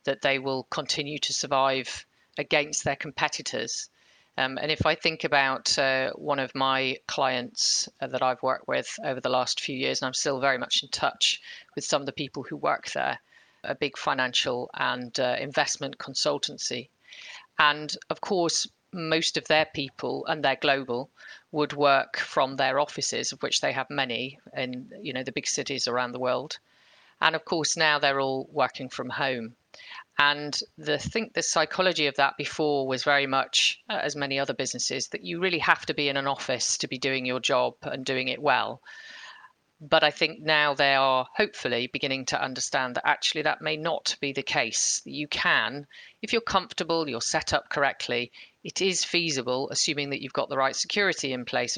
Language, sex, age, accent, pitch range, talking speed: English, female, 40-59, British, 130-155 Hz, 185 wpm